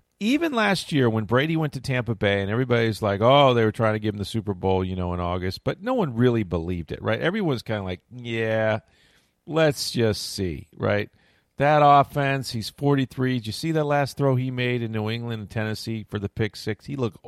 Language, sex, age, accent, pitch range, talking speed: English, male, 40-59, American, 105-140 Hz, 225 wpm